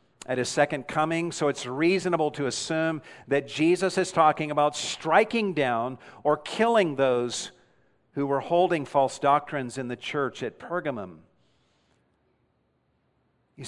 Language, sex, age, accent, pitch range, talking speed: English, male, 50-69, American, 125-145 Hz, 130 wpm